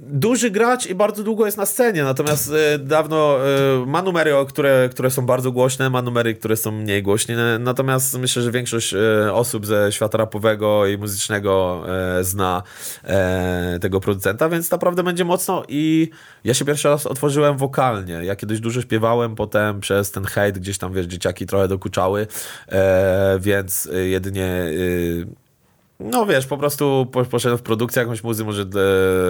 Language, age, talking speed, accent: Polish, 20-39, 150 wpm, native